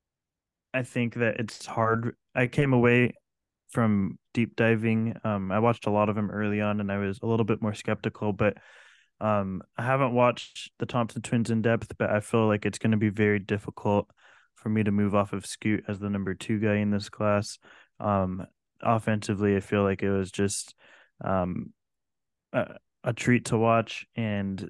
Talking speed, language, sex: 190 wpm, English, male